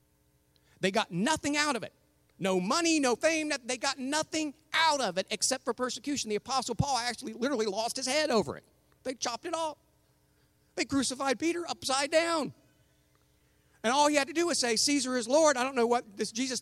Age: 50-69